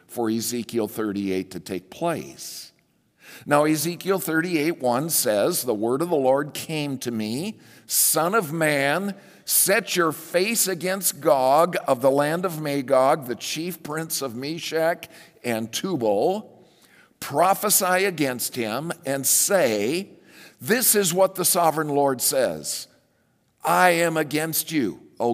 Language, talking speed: English, 135 wpm